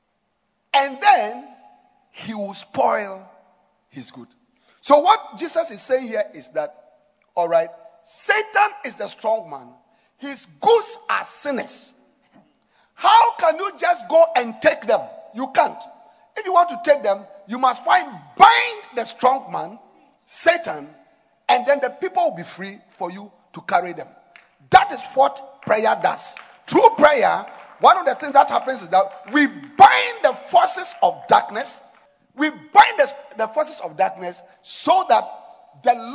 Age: 50-69